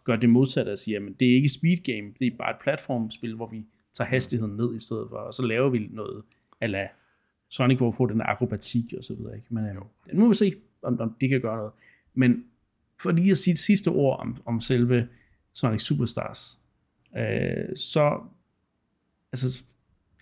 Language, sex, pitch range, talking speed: Danish, male, 115-135 Hz, 190 wpm